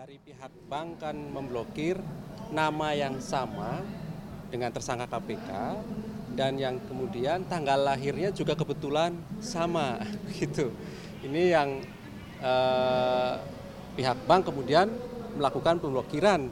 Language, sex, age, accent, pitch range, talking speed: Indonesian, male, 40-59, native, 135-180 Hz, 100 wpm